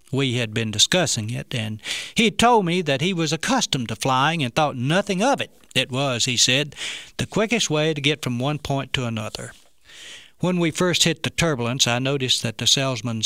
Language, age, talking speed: English, 60-79, 205 wpm